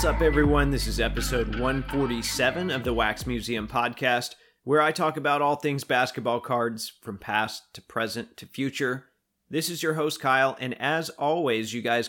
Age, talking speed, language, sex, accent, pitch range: 30-49, 180 wpm, English, male, American, 120-145 Hz